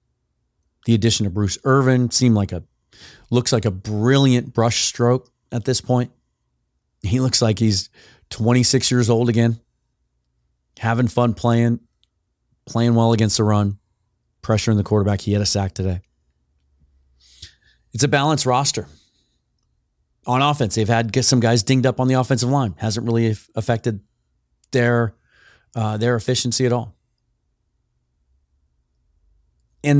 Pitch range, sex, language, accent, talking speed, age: 95-125 Hz, male, English, American, 135 wpm, 30-49